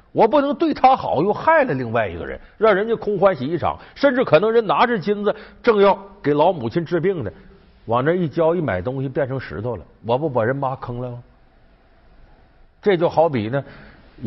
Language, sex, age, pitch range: Chinese, male, 50-69, 110-165 Hz